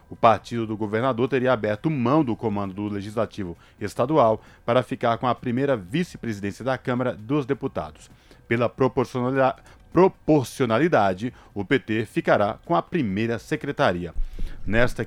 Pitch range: 110-135 Hz